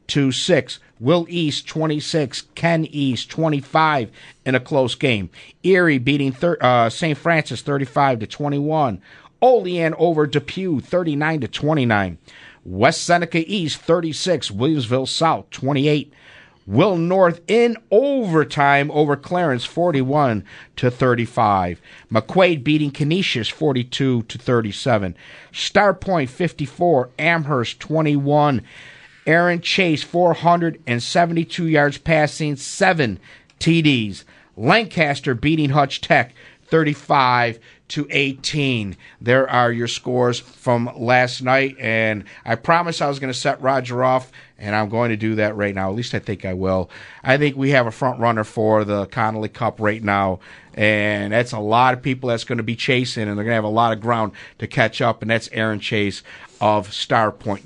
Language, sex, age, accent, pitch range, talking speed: English, male, 50-69, American, 115-155 Hz, 160 wpm